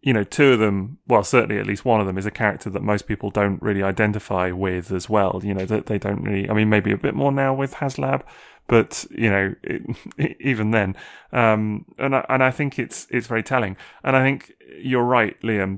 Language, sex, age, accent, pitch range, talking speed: English, male, 30-49, British, 100-125 Hz, 230 wpm